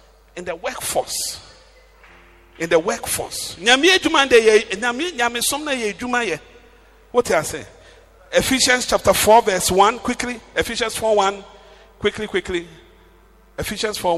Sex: male